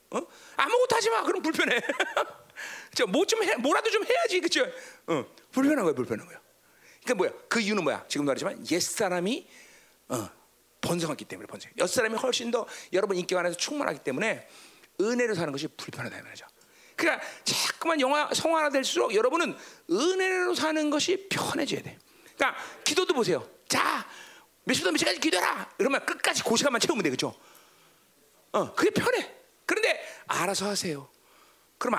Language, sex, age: Korean, male, 40-59